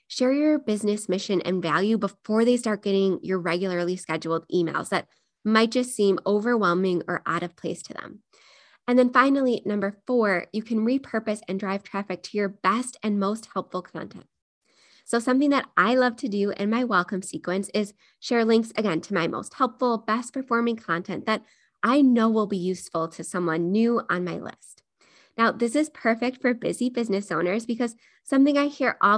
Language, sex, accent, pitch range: English, female, American, 185-235 Hz